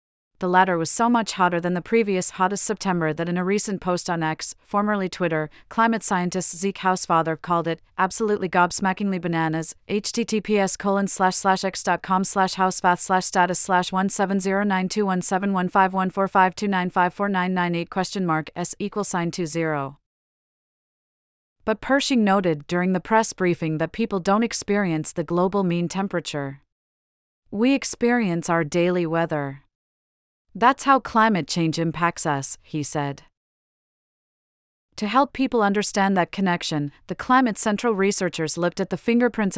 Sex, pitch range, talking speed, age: female, 165-200 Hz, 115 wpm, 40-59